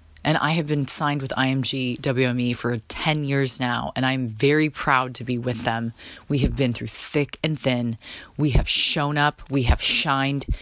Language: English